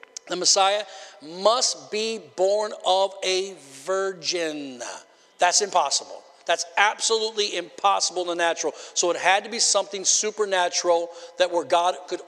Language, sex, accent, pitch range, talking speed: English, male, American, 185-240 Hz, 130 wpm